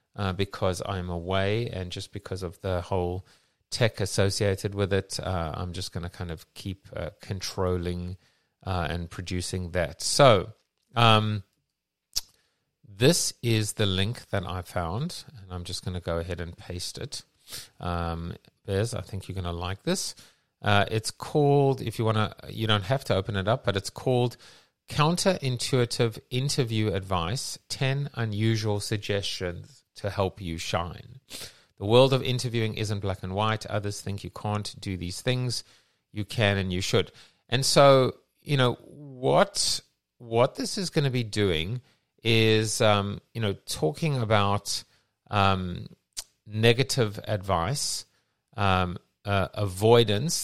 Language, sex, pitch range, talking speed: English, male, 95-120 Hz, 150 wpm